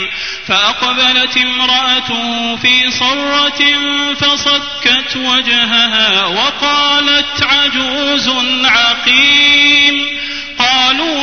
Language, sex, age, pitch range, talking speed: Arabic, male, 30-49, 215-255 Hz, 55 wpm